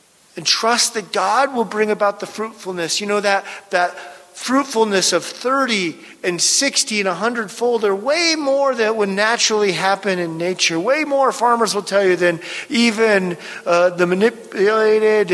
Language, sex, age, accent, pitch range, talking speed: English, male, 40-59, American, 160-215 Hz, 155 wpm